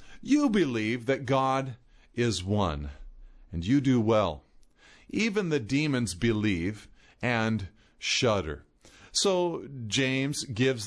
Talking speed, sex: 105 wpm, male